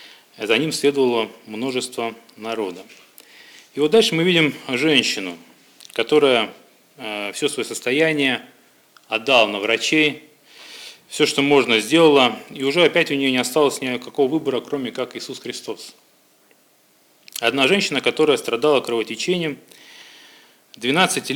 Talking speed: 115 wpm